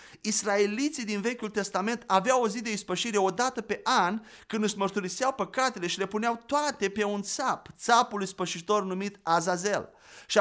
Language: Romanian